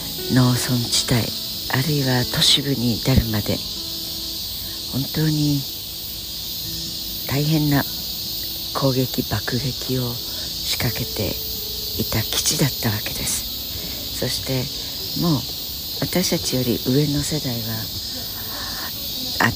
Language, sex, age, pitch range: Japanese, female, 60-79, 100-140 Hz